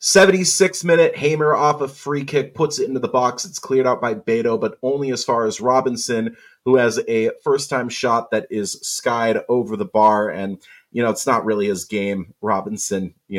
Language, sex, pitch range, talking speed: English, male, 110-165 Hz, 200 wpm